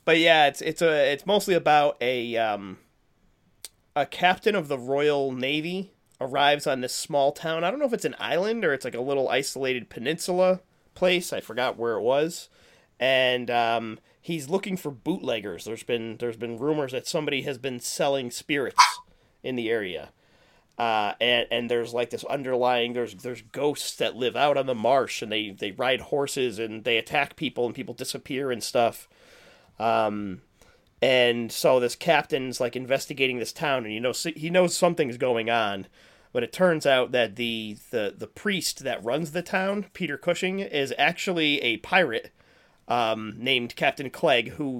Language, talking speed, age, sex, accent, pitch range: English, 175 wpm, 30-49, male, American, 120-160 Hz